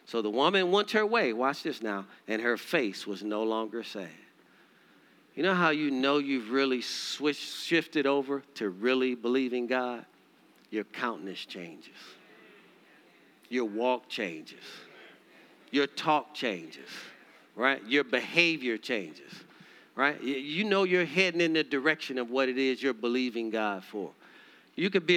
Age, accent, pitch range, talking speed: 50-69, American, 120-165 Hz, 150 wpm